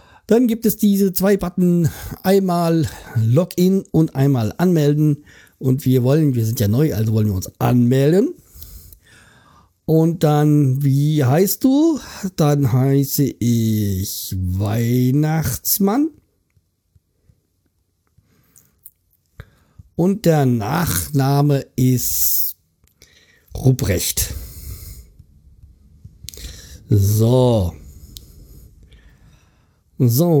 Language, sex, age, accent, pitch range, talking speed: German, male, 50-69, German, 95-155 Hz, 75 wpm